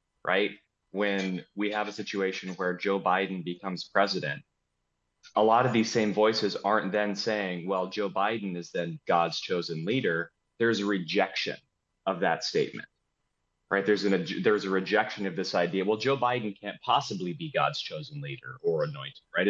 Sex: male